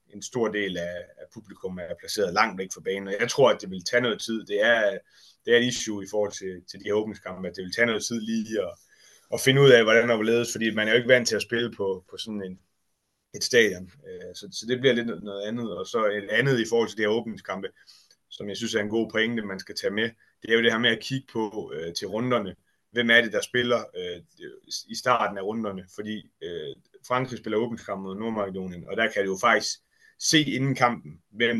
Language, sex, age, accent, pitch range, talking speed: Danish, male, 30-49, native, 100-125 Hz, 245 wpm